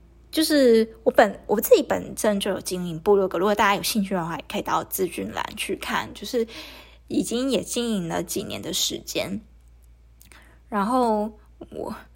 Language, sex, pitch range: Chinese, female, 185-225 Hz